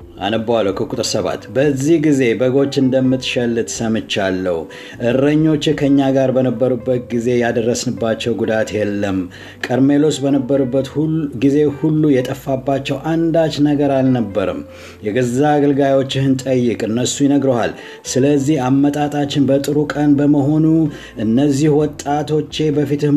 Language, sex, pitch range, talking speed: Amharic, male, 115-145 Hz, 95 wpm